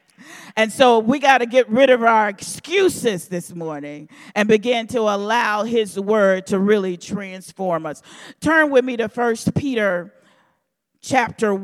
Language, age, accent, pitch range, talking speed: English, 40-59, American, 195-255 Hz, 150 wpm